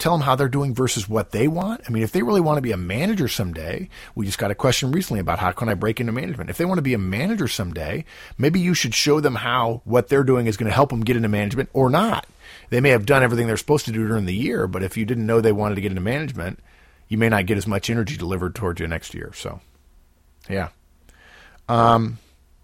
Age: 50-69